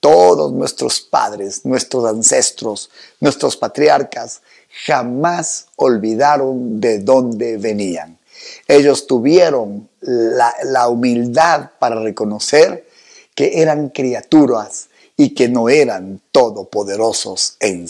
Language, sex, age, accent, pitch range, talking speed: Spanish, male, 50-69, Mexican, 115-170 Hz, 95 wpm